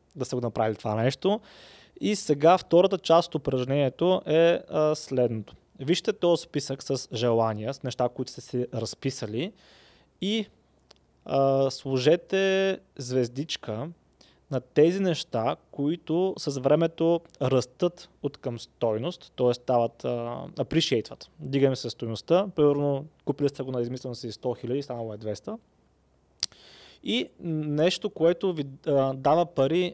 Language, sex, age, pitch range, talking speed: Bulgarian, male, 20-39, 125-165 Hz, 125 wpm